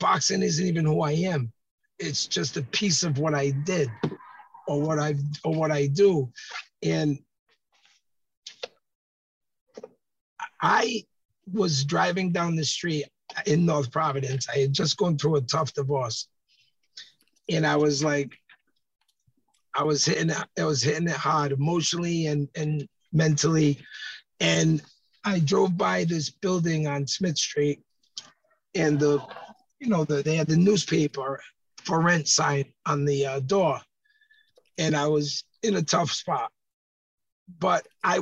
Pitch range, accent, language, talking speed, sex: 145-180 Hz, American, English, 140 wpm, male